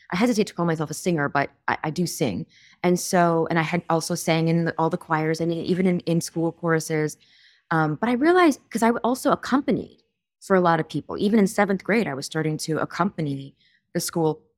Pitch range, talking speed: 155-205 Hz, 220 wpm